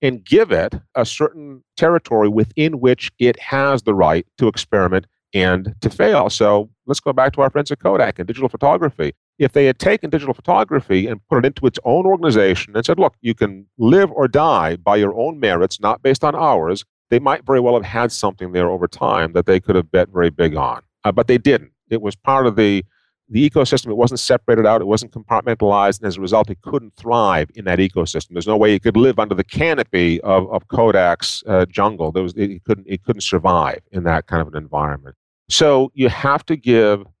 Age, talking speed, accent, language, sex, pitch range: 40-59, 220 wpm, American, English, male, 95-130 Hz